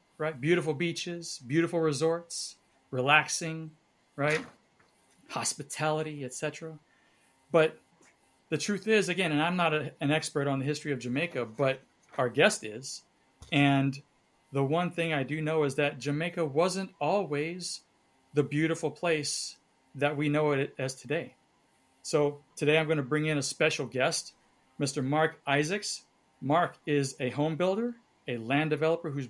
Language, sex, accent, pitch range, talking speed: English, male, American, 135-165 Hz, 145 wpm